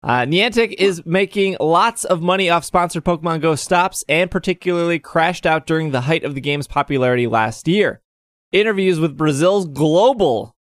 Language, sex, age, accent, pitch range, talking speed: English, male, 20-39, American, 125-175 Hz, 165 wpm